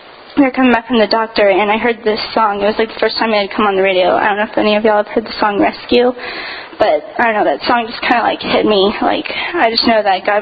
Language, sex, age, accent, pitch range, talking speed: English, female, 10-29, American, 210-245 Hz, 310 wpm